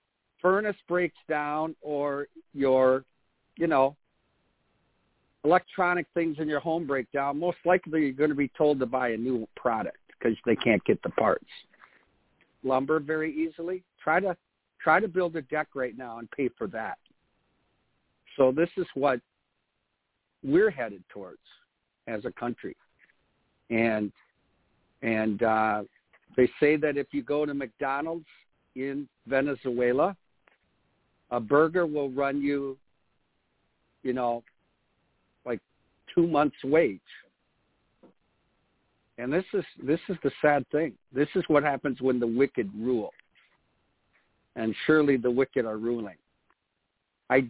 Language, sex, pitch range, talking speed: English, male, 125-155 Hz, 130 wpm